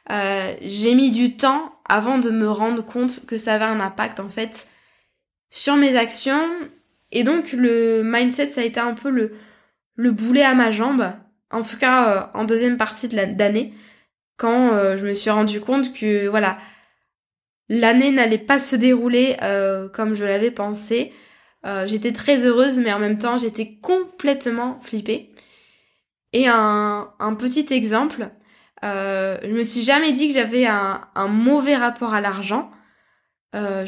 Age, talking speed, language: 20-39, 170 wpm, French